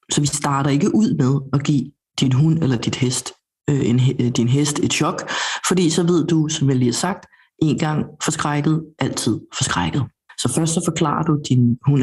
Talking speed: 195 wpm